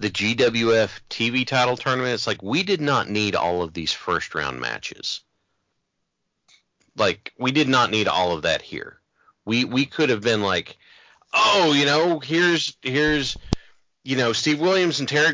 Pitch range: 110-145 Hz